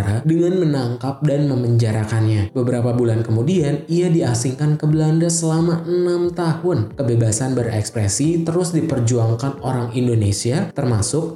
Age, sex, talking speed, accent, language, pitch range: 20-39, male, 110 wpm, native, Indonesian, 115-155 Hz